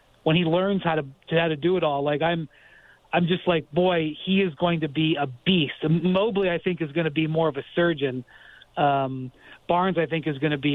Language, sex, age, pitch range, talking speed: English, male, 40-59, 150-190 Hz, 235 wpm